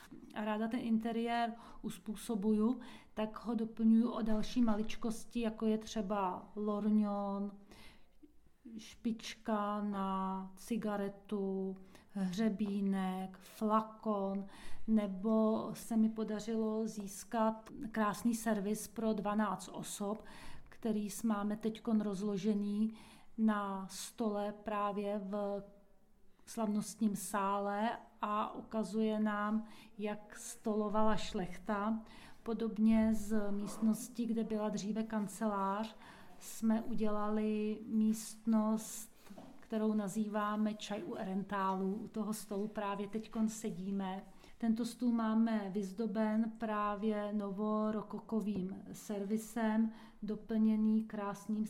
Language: Czech